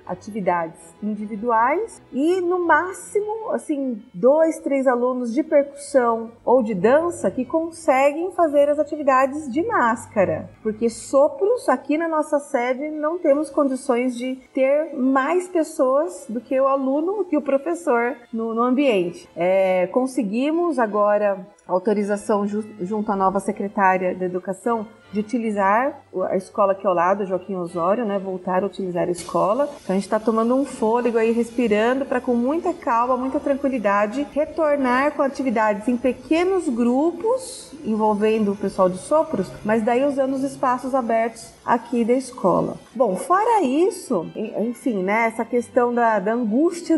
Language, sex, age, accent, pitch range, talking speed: Portuguese, female, 30-49, Brazilian, 215-285 Hz, 145 wpm